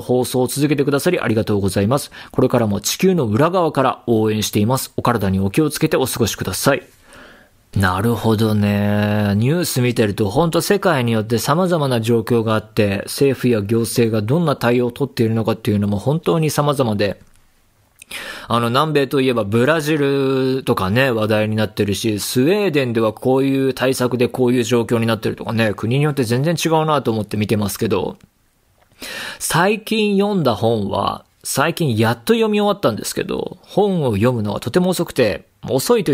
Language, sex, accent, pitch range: Japanese, male, native, 110-150 Hz